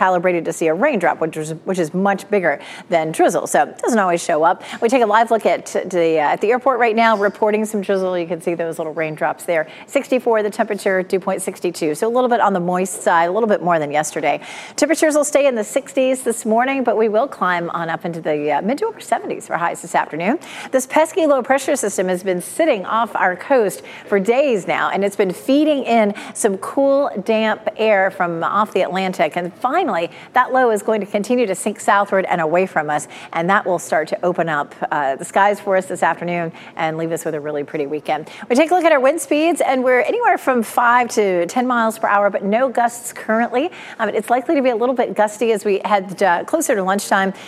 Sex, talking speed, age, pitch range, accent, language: female, 235 wpm, 40-59, 175-245 Hz, American, English